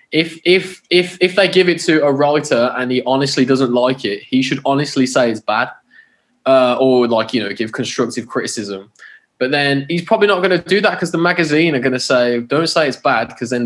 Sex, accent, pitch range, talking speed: male, British, 120-160 Hz, 230 wpm